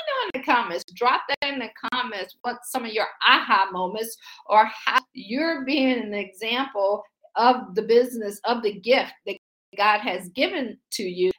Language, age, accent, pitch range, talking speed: English, 50-69, American, 205-265 Hz, 170 wpm